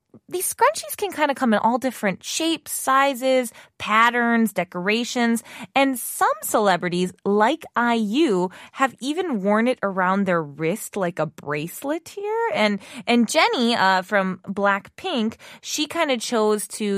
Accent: American